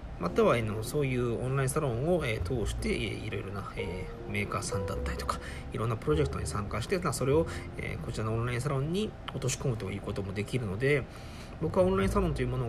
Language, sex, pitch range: Japanese, male, 100-140 Hz